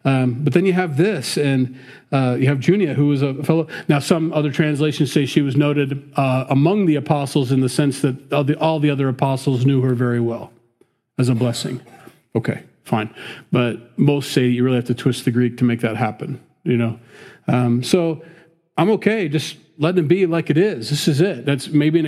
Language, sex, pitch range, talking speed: English, male, 125-155 Hz, 215 wpm